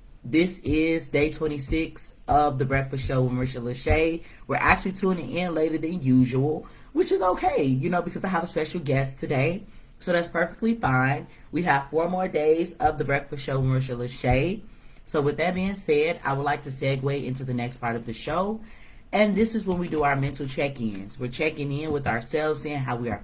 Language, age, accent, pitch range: English, 30-49, American, 125-160 Hz